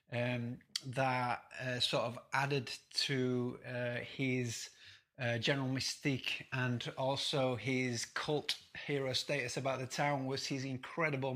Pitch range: 125-145 Hz